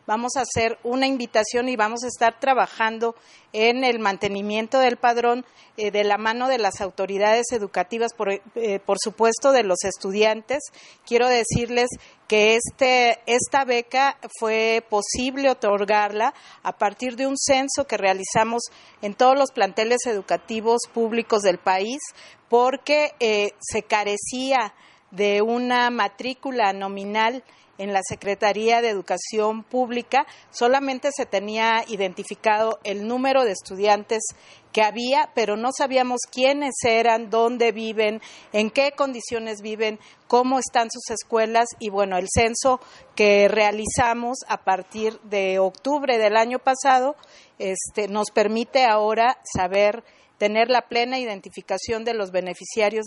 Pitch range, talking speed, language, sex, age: 210-250 Hz, 130 wpm, Spanish, female, 40-59